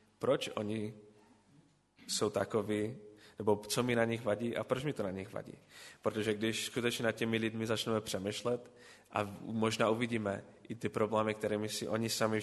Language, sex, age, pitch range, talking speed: Czech, male, 20-39, 105-115 Hz, 175 wpm